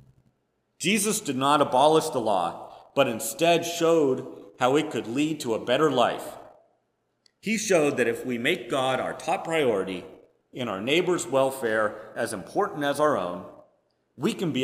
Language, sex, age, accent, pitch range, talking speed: English, male, 40-59, American, 125-160 Hz, 160 wpm